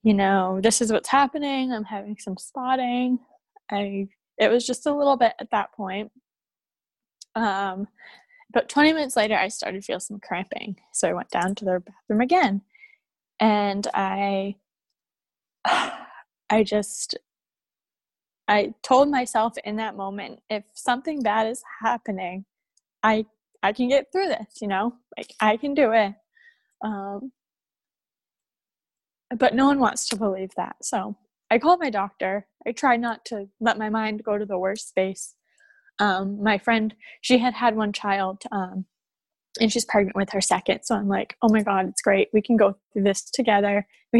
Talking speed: 165 wpm